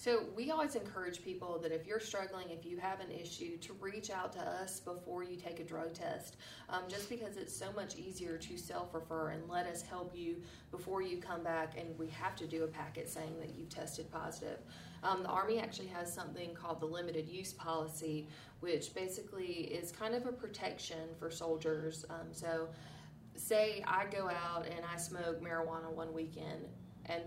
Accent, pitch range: American, 160-180 Hz